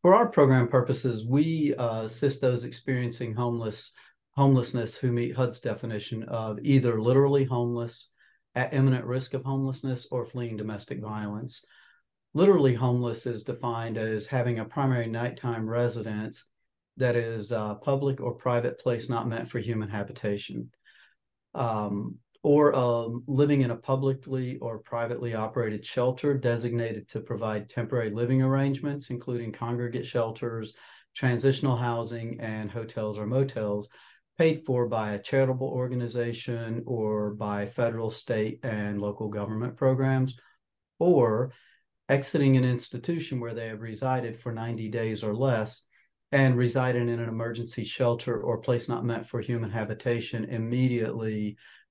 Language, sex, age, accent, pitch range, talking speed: English, male, 40-59, American, 115-130 Hz, 135 wpm